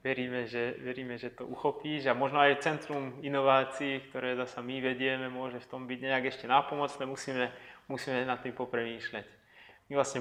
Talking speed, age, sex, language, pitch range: 170 wpm, 20-39, male, Slovak, 125-140 Hz